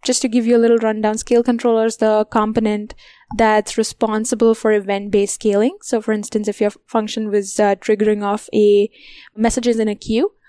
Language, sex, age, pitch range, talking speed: English, female, 10-29, 210-240 Hz, 190 wpm